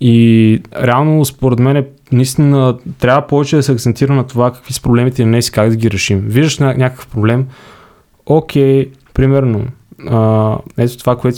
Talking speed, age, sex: 165 wpm, 20-39, male